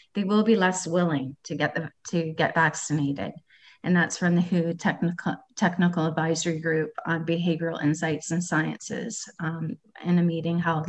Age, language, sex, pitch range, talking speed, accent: 30-49, English, female, 160-180 Hz, 165 wpm, American